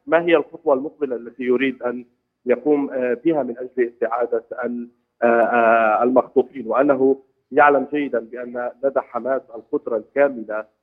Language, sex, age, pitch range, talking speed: Arabic, male, 40-59, 120-145 Hz, 115 wpm